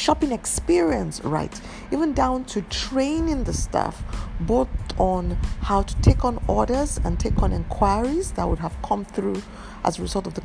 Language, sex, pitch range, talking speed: English, female, 170-250 Hz, 170 wpm